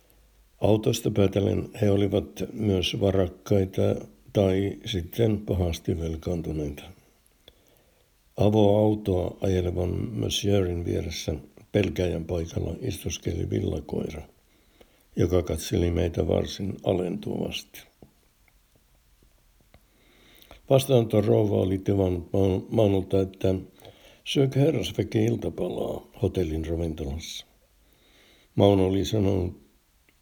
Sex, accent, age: male, native, 60-79